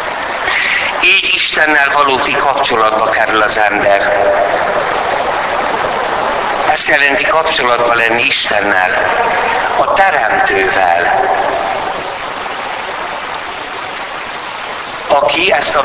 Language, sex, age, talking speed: Hungarian, male, 60-79, 60 wpm